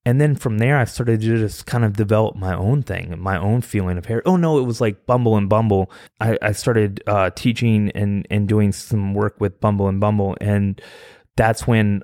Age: 20-39